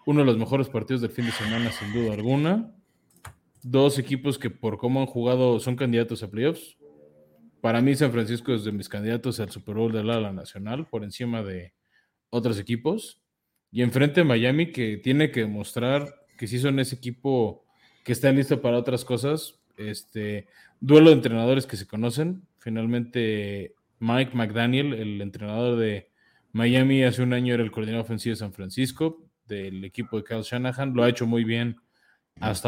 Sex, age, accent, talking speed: male, 20-39, Mexican, 175 wpm